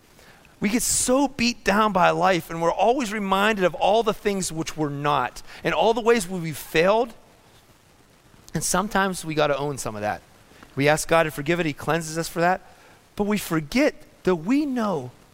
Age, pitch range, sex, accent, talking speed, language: 30-49, 150-215 Hz, male, American, 195 wpm, English